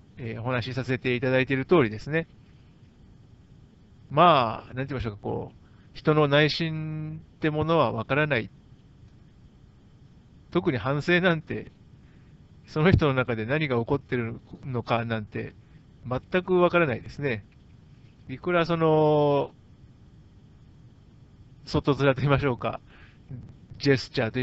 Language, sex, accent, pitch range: Japanese, male, native, 120-160 Hz